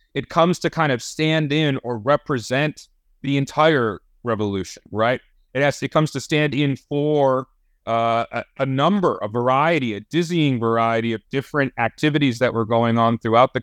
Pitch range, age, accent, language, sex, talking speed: 115-140 Hz, 30-49, American, English, male, 170 wpm